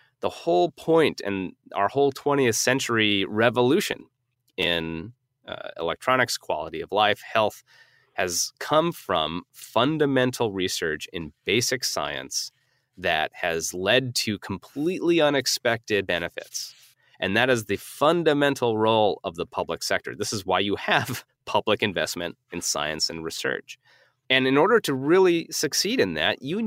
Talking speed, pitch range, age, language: 135 wpm, 110-150 Hz, 30-49, English